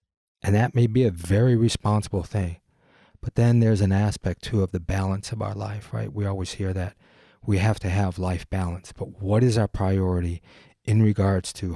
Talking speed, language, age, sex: 200 wpm, English, 30-49, male